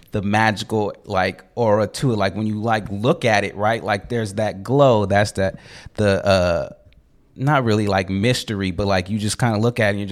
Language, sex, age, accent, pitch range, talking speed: English, male, 30-49, American, 95-115 Hz, 220 wpm